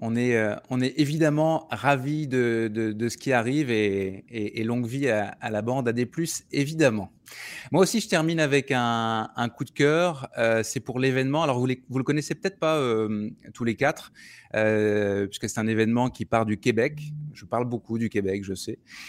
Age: 20-39